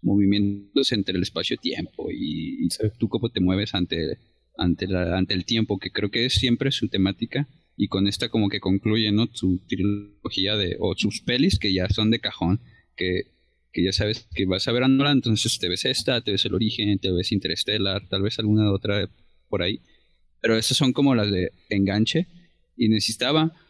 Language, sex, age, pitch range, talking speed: Spanish, male, 30-49, 100-130 Hz, 190 wpm